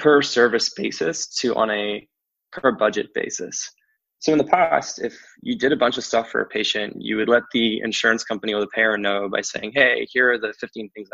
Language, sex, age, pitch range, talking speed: English, male, 20-39, 110-145 Hz, 220 wpm